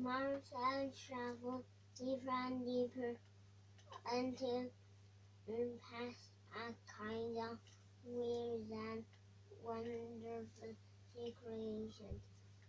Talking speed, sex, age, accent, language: 70 wpm, male, 20-39, American, English